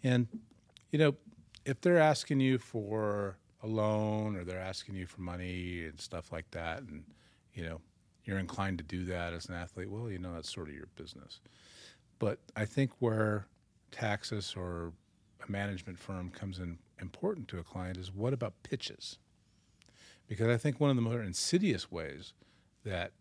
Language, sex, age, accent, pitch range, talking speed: English, male, 40-59, American, 90-115 Hz, 175 wpm